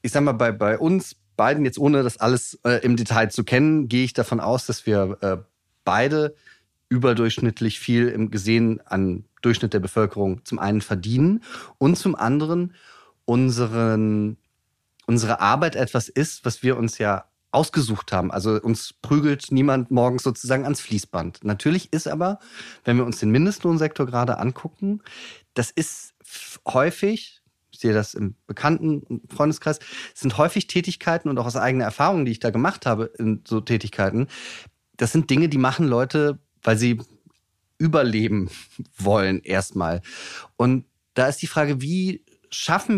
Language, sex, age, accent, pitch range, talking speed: German, male, 30-49, German, 110-145 Hz, 155 wpm